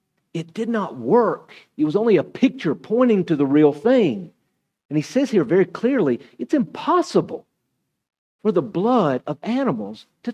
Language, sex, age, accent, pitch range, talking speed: English, male, 50-69, American, 140-220 Hz, 165 wpm